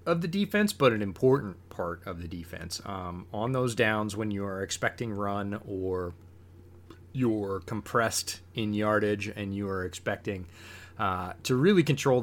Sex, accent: male, American